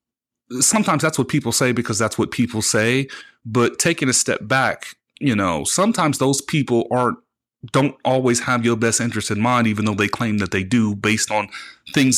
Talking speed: 190 wpm